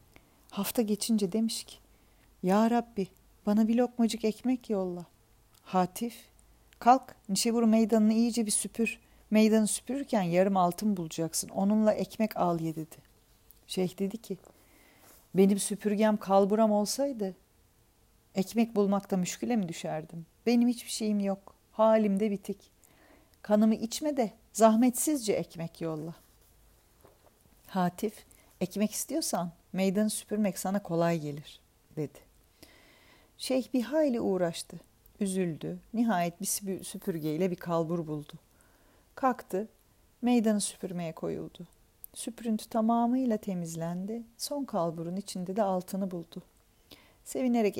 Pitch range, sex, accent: 175-225 Hz, female, native